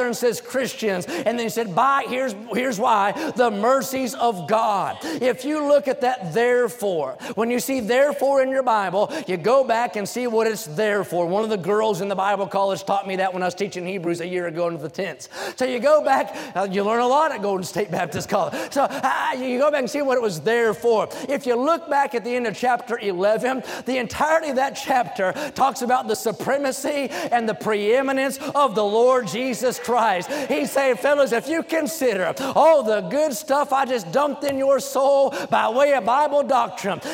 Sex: male